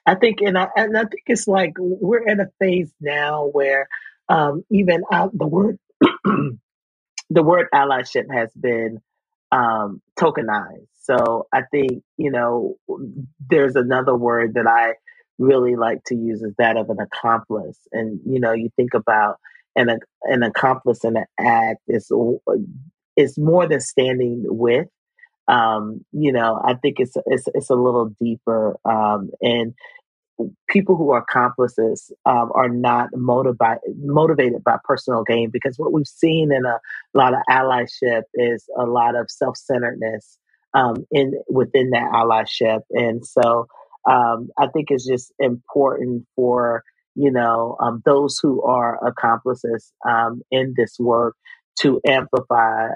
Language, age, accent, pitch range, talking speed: English, 40-59, American, 115-155 Hz, 145 wpm